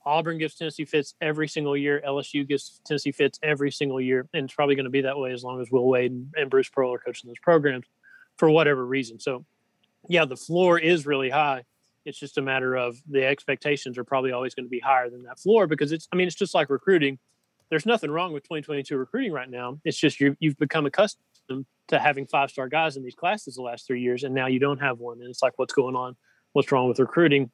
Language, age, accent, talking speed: English, 30-49, American, 240 wpm